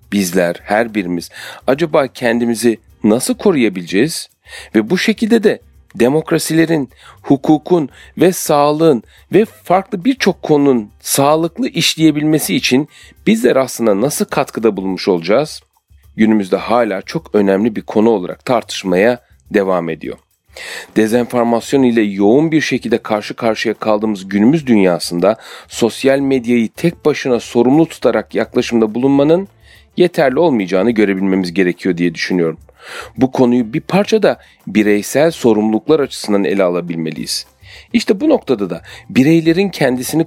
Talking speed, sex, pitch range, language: 115 wpm, male, 105-155 Hz, Turkish